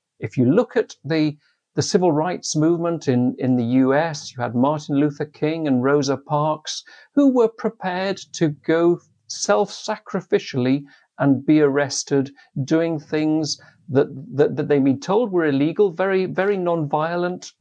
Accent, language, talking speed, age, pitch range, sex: British, English, 145 wpm, 50-69, 135-175 Hz, male